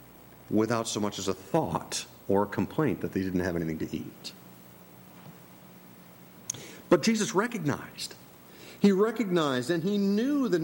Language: English